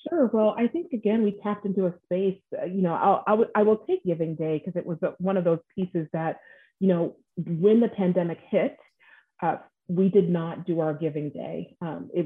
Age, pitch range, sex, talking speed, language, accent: 30-49, 160-195 Hz, female, 220 wpm, English, American